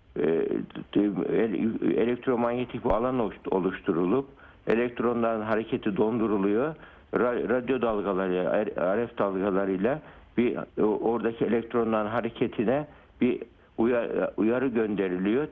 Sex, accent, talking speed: male, native, 65 wpm